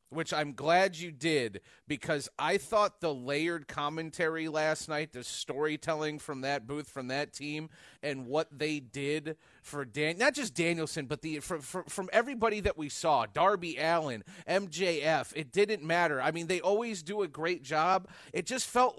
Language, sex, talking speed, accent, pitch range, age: English, male, 175 wpm, American, 155-210 Hz, 30-49